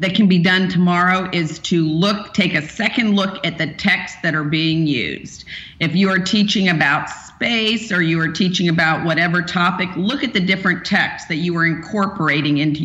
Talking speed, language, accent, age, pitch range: 195 wpm, English, American, 40-59, 160-195 Hz